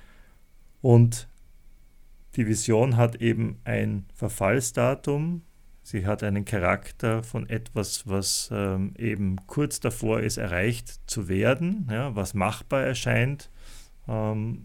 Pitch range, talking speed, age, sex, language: 100-120 Hz, 105 wpm, 40-59, male, German